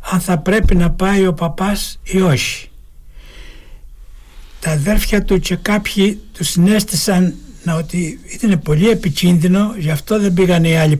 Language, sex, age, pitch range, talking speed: Greek, male, 60-79, 145-200 Hz, 140 wpm